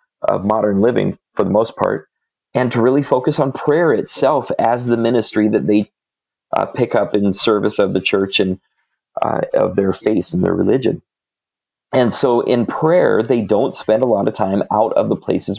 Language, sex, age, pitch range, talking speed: English, male, 30-49, 105-125 Hz, 195 wpm